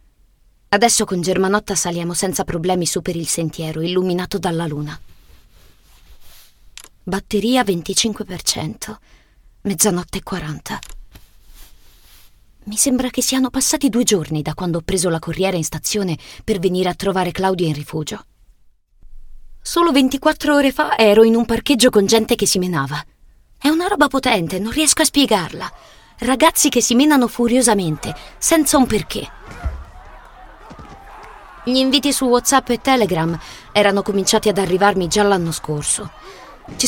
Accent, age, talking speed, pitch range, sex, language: native, 20-39, 135 wpm, 175-250 Hz, female, Italian